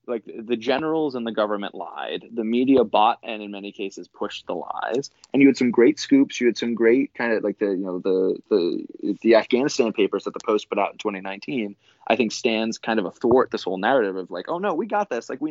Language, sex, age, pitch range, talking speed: English, male, 20-39, 105-170 Hz, 250 wpm